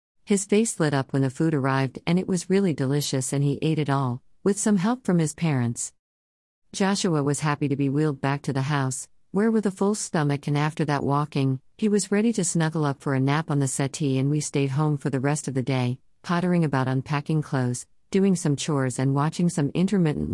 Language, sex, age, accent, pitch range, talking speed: English, female, 50-69, American, 130-165 Hz, 225 wpm